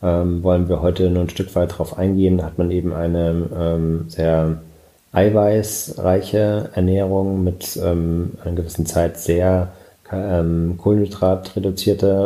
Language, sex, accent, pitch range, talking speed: German, male, German, 85-95 Hz, 125 wpm